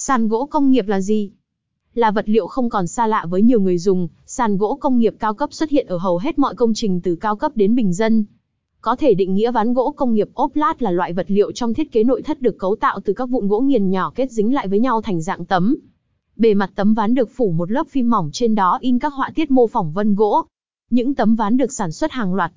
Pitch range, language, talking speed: 195-250 Hz, Vietnamese, 270 wpm